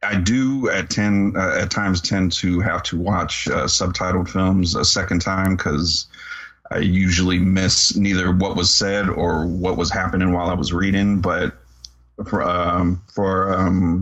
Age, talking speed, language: 30-49, 165 wpm, English